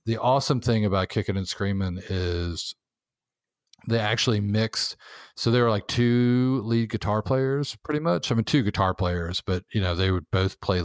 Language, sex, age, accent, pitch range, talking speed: English, male, 40-59, American, 85-110 Hz, 185 wpm